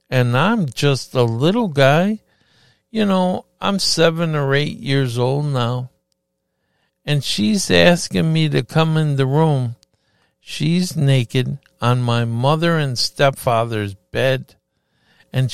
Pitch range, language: 115-160 Hz, English